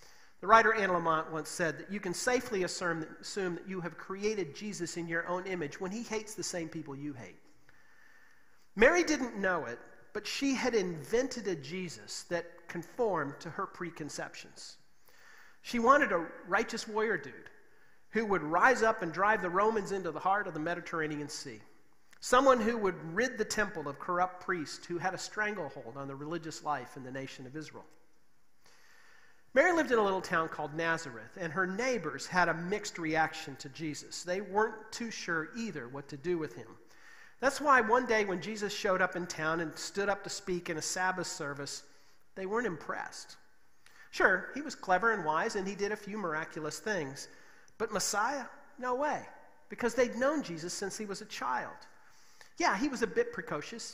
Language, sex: English, male